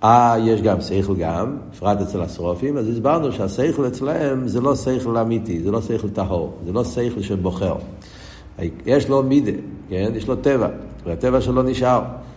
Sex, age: male, 60-79